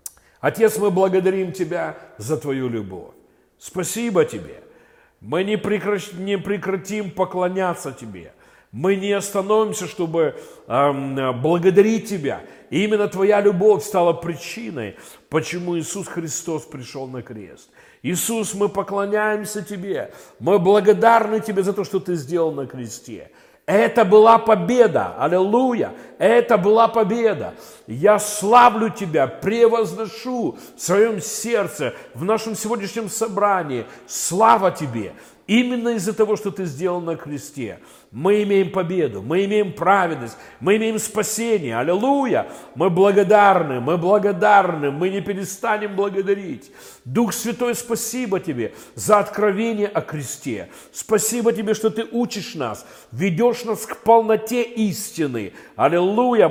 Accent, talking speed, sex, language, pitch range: native, 120 wpm, male, Russian, 175-220 Hz